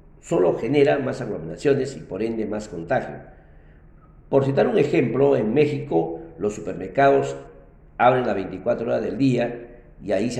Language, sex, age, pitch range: Spanish, male, 50-69, 105-140 Hz